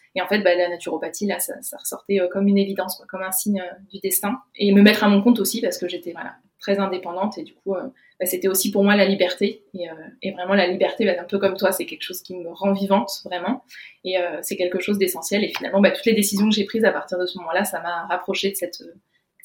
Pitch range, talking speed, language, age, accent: 180-215 Hz, 280 wpm, French, 20-39, French